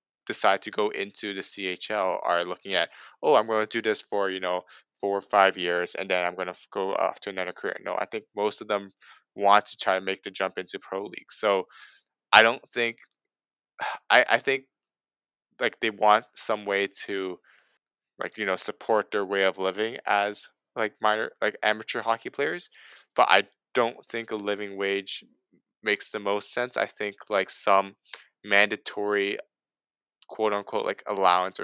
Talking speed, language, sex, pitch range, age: 180 wpm, English, male, 95-105 Hz, 20-39